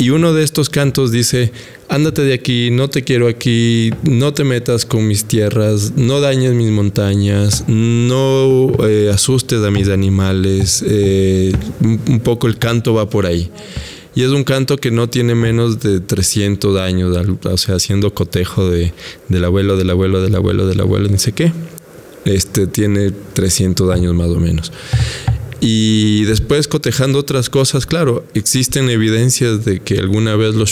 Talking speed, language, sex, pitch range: 160 wpm, Spanish, male, 95-115 Hz